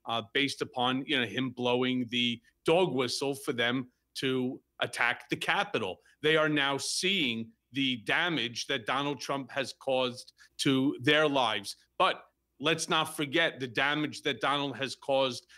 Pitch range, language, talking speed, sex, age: 130-160 Hz, English, 155 wpm, male, 40-59